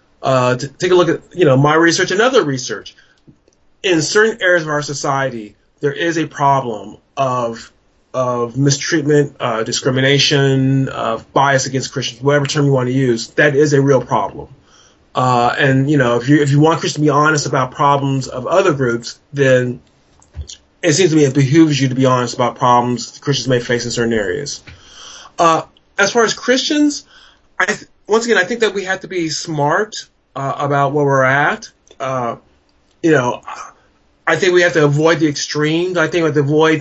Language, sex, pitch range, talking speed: English, male, 135-160 Hz, 195 wpm